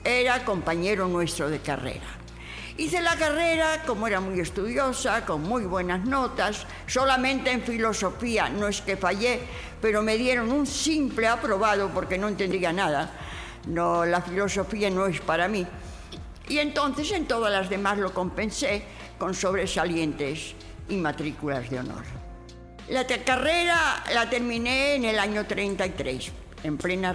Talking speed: 145 wpm